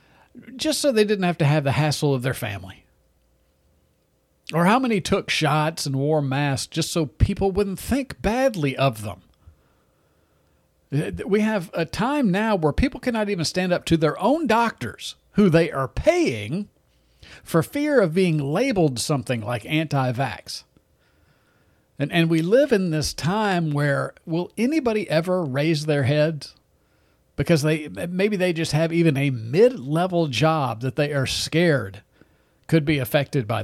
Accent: American